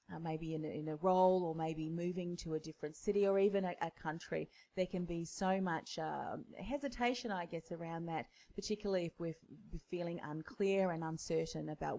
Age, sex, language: 30-49, female, English